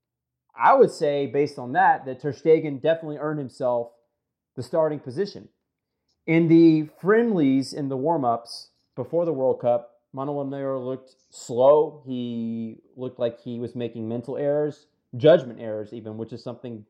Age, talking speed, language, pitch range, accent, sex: 30-49, 155 wpm, English, 120-150 Hz, American, male